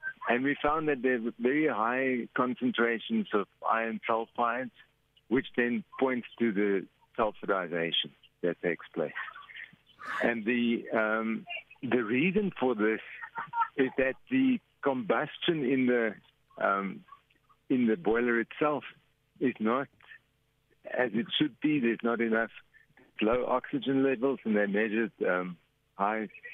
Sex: male